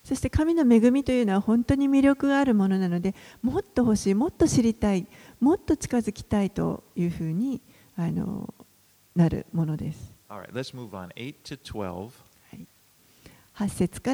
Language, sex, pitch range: Japanese, female, 175-230 Hz